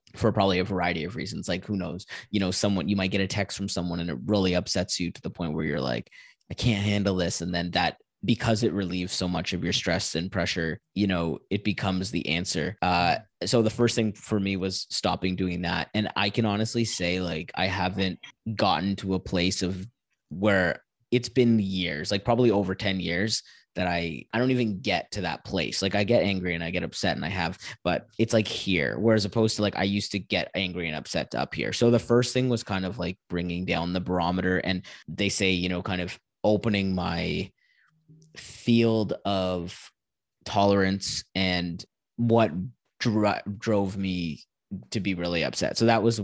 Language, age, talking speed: English, 20-39, 205 wpm